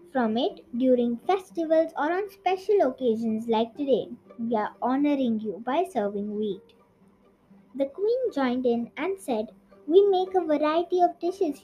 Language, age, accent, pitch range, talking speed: English, 20-39, Indian, 235-335 Hz, 150 wpm